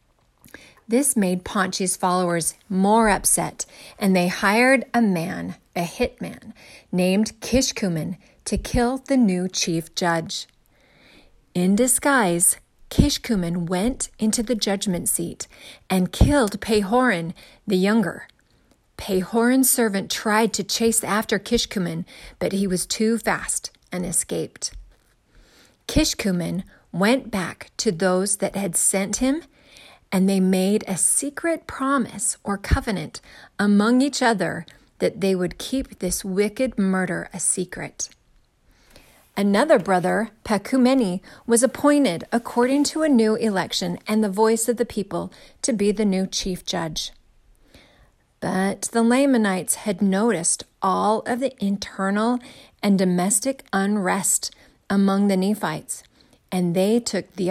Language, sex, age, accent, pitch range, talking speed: English, female, 30-49, American, 185-235 Hz, 125 wpm